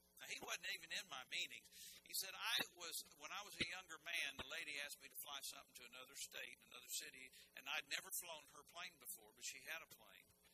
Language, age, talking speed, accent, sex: English, 60-79, 235 wpm, American, male